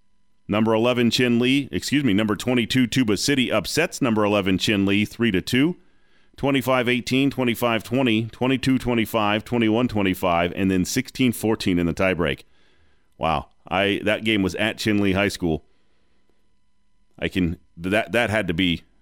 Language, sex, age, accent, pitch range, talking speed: English, male, 40-59, American, 95-125 Hz, 135 wpm